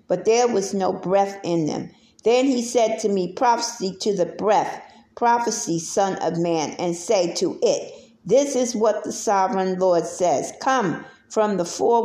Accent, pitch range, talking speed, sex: American, 185-235 Hz, 175 wpm, female